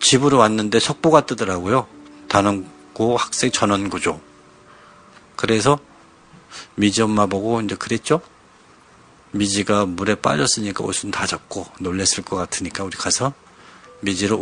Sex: male